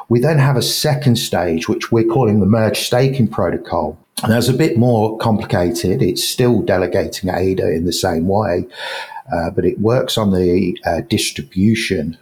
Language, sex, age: English, male, 50-69